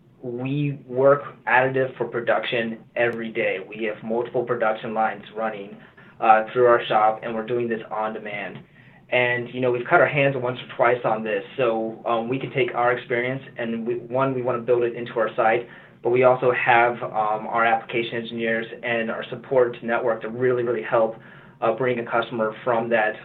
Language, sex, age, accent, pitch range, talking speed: English, male, 20-39, American, 110-125 Hz, 195 wpm